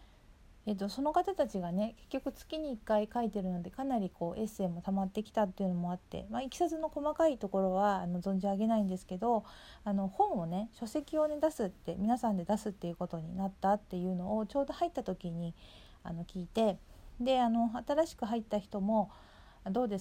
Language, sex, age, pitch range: Japanese, female, 40-59, 185-240 Hz